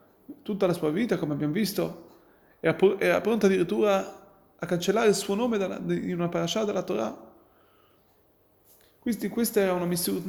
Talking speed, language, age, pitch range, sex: 155 wpm, Italian, 30-49, 175-220 Hz, male